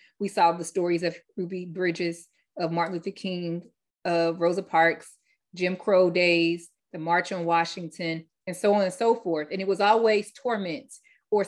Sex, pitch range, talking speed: female, 185-235 Hz, 175 wpm